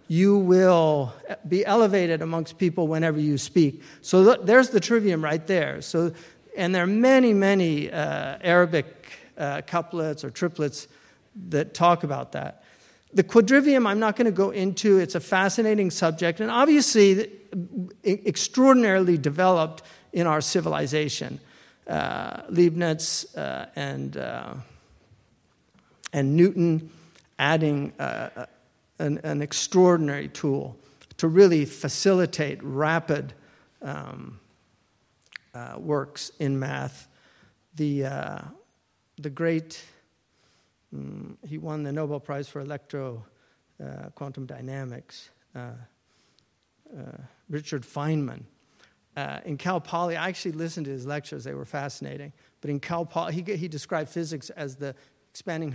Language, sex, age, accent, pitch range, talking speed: English, male, 50-69, American, 145-185 Hz, 125 wpm